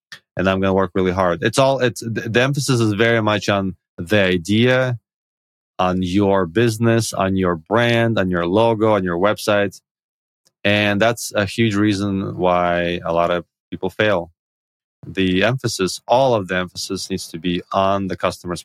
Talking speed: 175 wpm